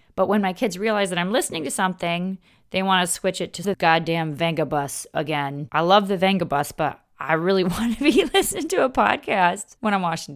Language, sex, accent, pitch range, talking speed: English, female, American, 170-235 Hz, 215 wpm